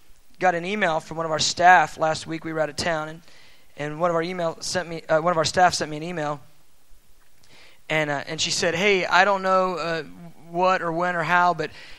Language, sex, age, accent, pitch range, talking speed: English, male, 20-39, American, 165-210 Hz, 240 wpm